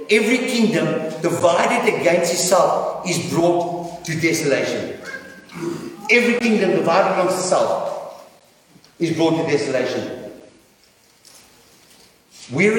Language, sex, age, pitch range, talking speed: English, male, 60-79, 150-195 Hz, 90 wpm